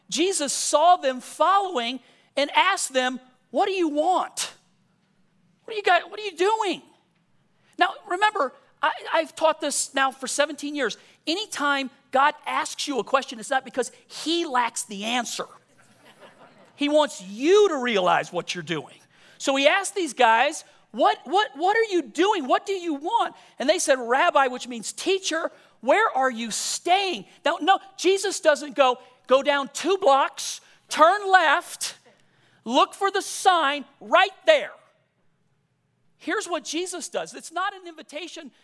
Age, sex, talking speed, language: 40-59, male, 150 wpm, English